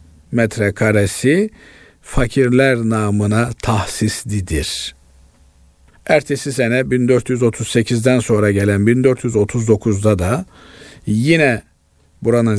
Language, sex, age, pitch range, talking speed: Turkish, male, 50-69, 100-125 Hz, 60 wpm